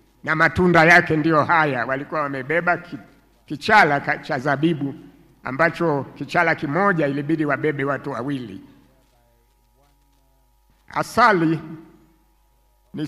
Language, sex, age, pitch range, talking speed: Swahili, male, 60-79, 135-170 Hz, 90 wpm